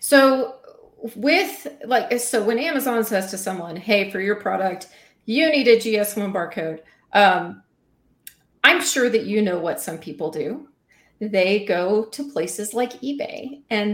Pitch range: 195-250 Hz